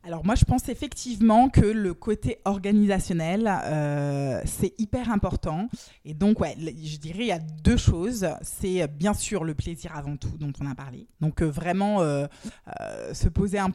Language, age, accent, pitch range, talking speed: French, 20-39, French, 150-195 Hz, 185 wpm